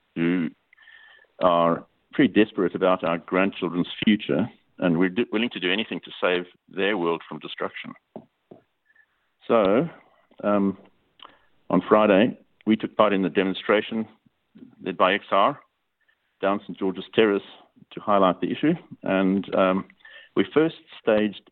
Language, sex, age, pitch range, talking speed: English, male, 50-69, 90-120 Hz, 130 wpm